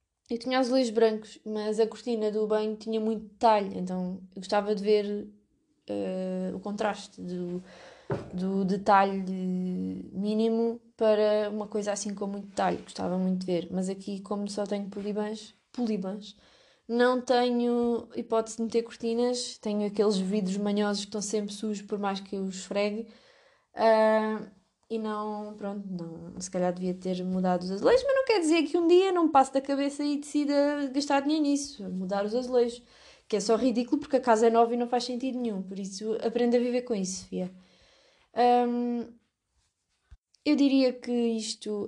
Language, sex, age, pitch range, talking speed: Portuguese, female, 20-39, 200-235 Hz, 170 wpm